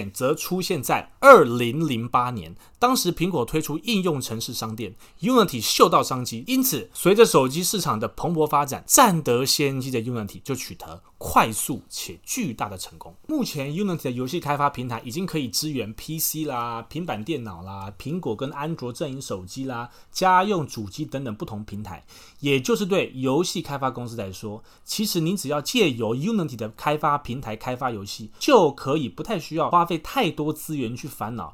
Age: 30-49